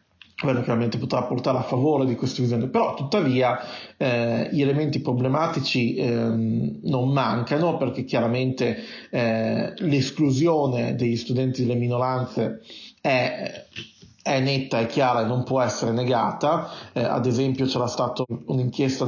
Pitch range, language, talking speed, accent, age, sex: 120-135 Hz, Italian, 130 wpm, native, 40-59, male